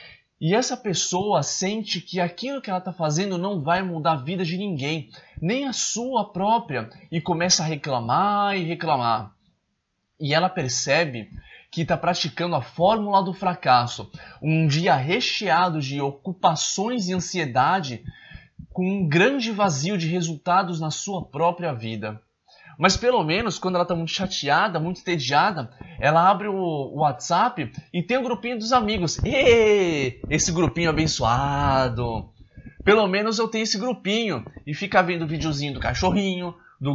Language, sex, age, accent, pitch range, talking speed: English, male, 20-39, Brazilian, 150-195 Hz, 150 wpm